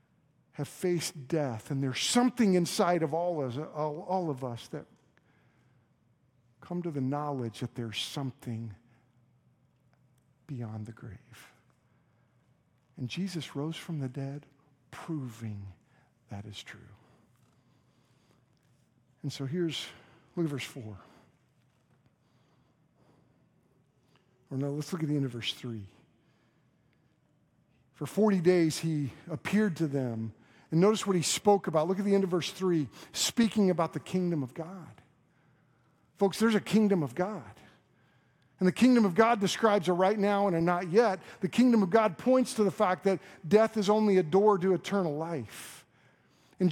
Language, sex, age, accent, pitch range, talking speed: English, male, 50-69, American, 135-200 Hz, 145 wpm